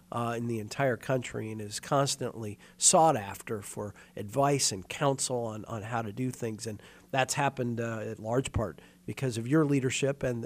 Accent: American